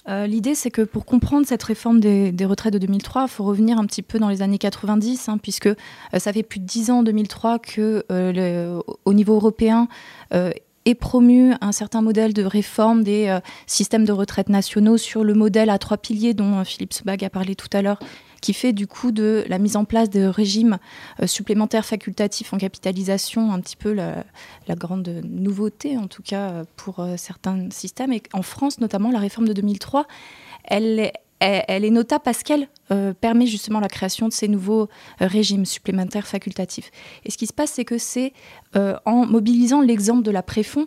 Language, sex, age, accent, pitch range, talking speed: French, female, 20-39, French, 200-235 Hz, 205 wpm